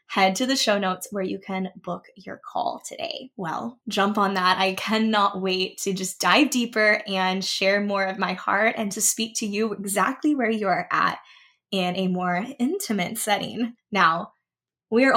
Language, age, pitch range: English, 10-29, 195-245 Hz